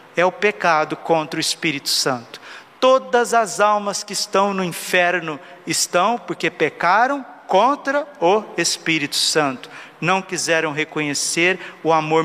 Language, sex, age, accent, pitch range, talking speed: Portuguese, male, 50-69, Brazilian, 155-185 Hz, 125 wpm